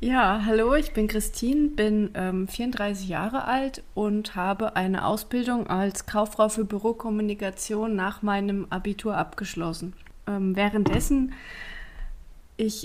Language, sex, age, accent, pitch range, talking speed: German, female, 30-49, German, 195-240 Hz, 115 wpm